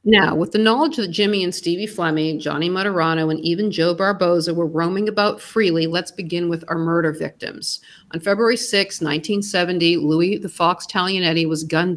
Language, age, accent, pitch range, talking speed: English, 50-69, American, 165-205 Hz, 175 wpm